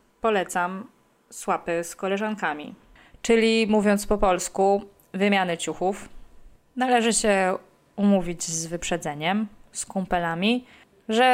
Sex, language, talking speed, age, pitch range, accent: female, Polish, 95 wpm, 20-39, 170-215 Hz, native